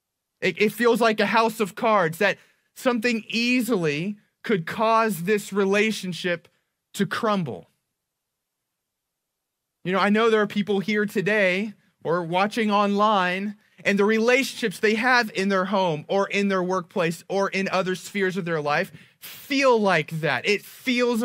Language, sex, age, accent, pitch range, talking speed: English, male, 20-39, American, 160-215 Hz, 145 wpm